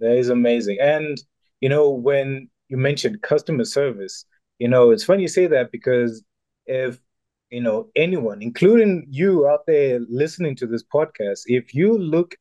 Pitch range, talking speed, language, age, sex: 120-155 Hz, 165 wpm, English, 20-39, male